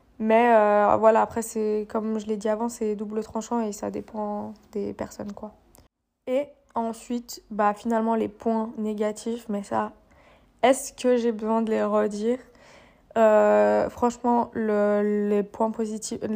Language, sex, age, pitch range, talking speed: French, female, 20-39, 210-235 Hz, 150 wpm